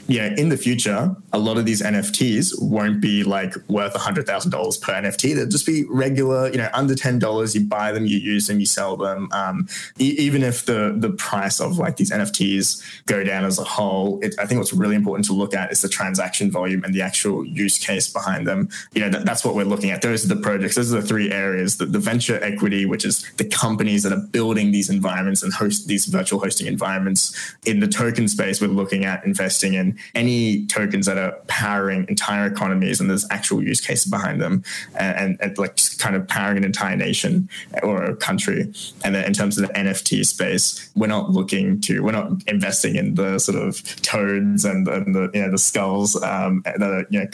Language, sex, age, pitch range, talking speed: English, male, 20-39, 95-125 Hz, 225 wpm